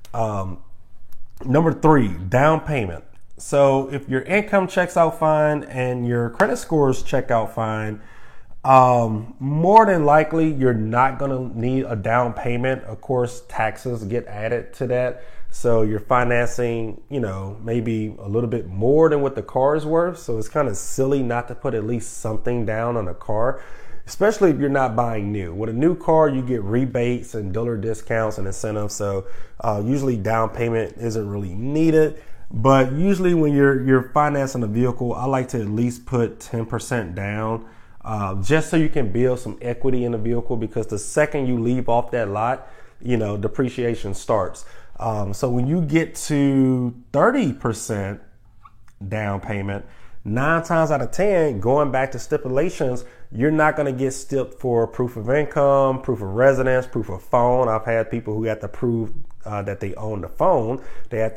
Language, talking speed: English, 175 wpm